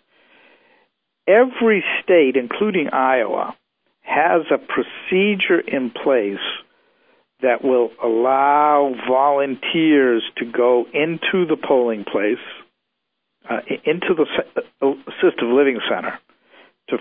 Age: 60-79